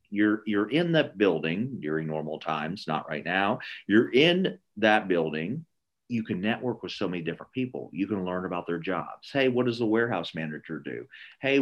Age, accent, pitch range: 40-59, American, 90-130 Hz